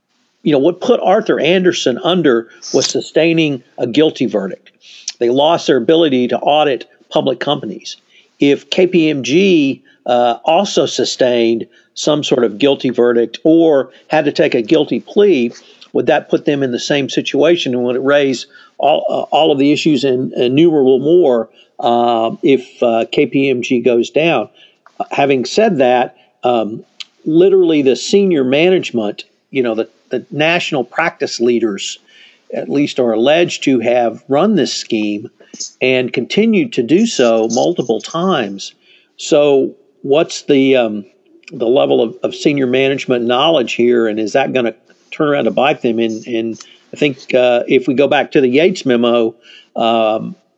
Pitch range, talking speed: 120-160 Hz, 155 wpm